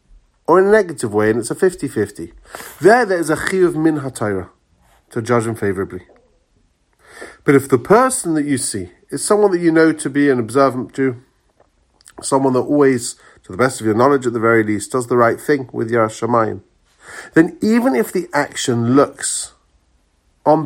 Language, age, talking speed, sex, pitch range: English, 40-59, 185 wpm, male, 105-145 Hz